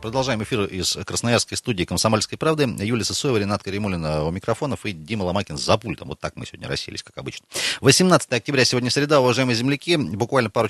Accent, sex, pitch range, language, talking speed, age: native, male, 90-125 Hz, Russian, 185 wpm, 30-49